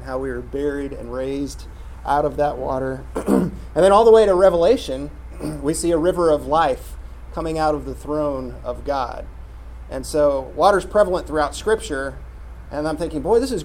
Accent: American